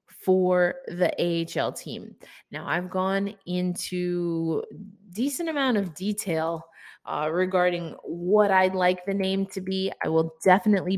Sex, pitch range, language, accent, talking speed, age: female, 175-225 Hz, English, American, 130 wpm, 20-39